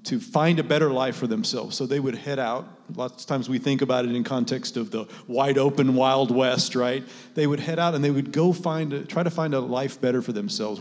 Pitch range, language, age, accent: 120-185 Hz, English, 40-59, American